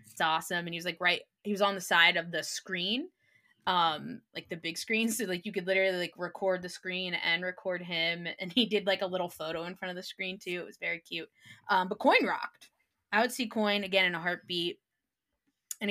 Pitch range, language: 175-220 Hz, English